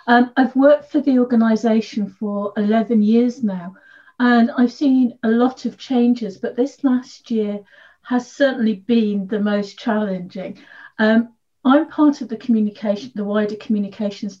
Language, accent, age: English, British, 50-69